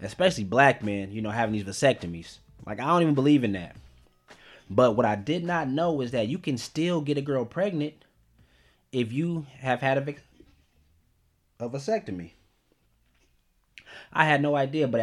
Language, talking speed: English, 170 wpm